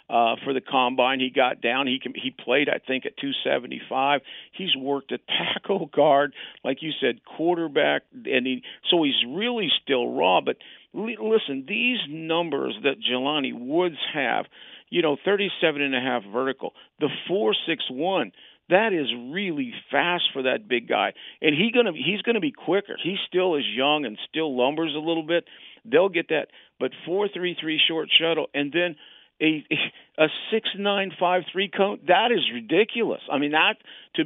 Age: 50-69